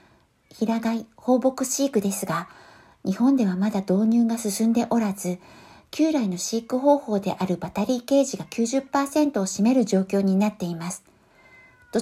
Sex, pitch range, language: female, 200-255 Hz, Japanese